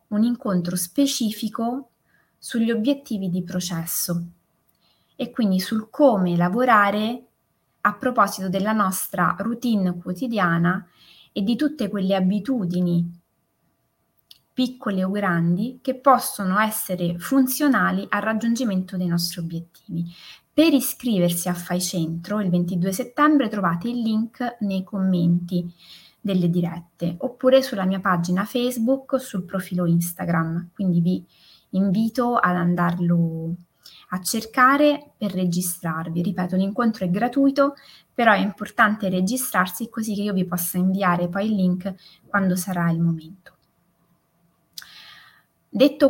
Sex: female